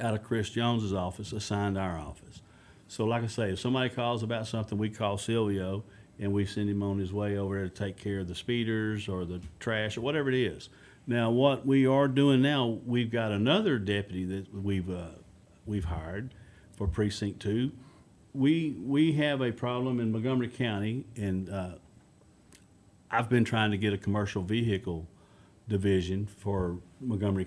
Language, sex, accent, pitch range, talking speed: English, male, American, 100-120 Hz, 175 wpm